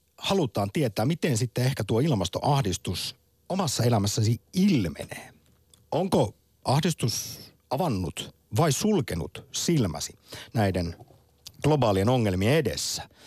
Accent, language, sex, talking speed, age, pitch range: native, Finnish, male, 90 wpm, 50-69, 95-140 Hz